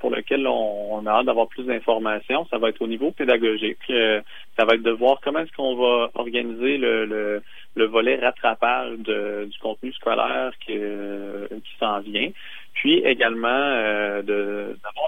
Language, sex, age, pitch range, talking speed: French, male, 30-49, 110-135 Hz, 165 wpm